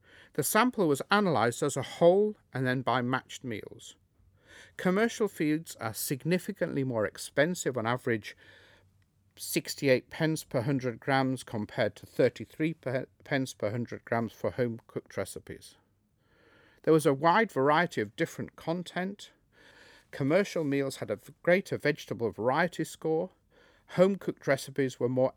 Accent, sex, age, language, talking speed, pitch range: British, male, 50-69, English, 135 wpm, 110-160 Hz